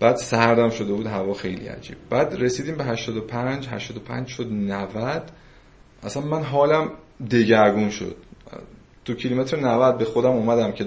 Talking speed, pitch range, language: 145 wpm, 105-125 Hz, Persian